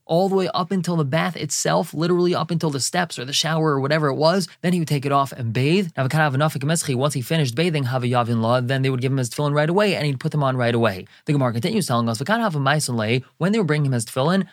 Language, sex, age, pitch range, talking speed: English, male, 20-39, 130-165 Hz, 320 wpm